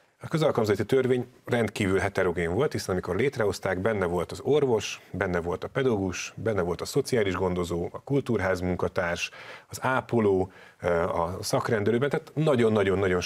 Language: Hungarian